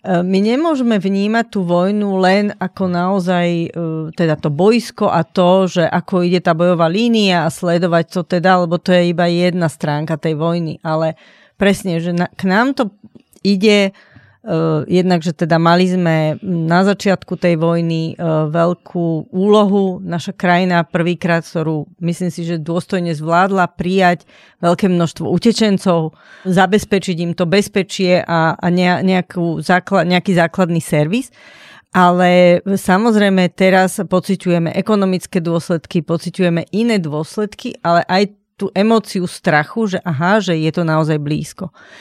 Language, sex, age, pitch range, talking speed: Slovak, female, 40-59, 170-205 Hz, 135 wpm